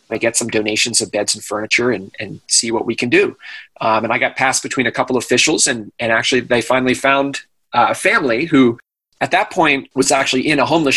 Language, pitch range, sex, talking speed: English, 115-130 Hz, male, 230 wpm